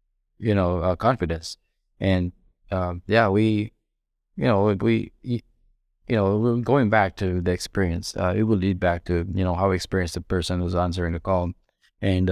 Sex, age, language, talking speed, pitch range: male, 20-39, English, 180 wpm, 90-100 Hz